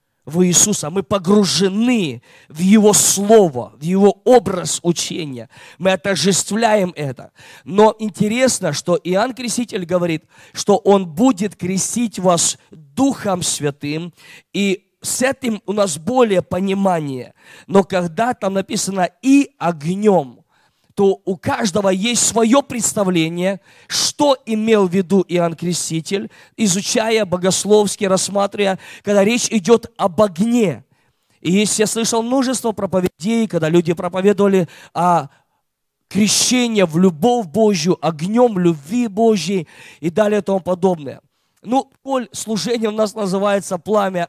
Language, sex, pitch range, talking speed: Russian, male, 175-215 Hz, 120 wpm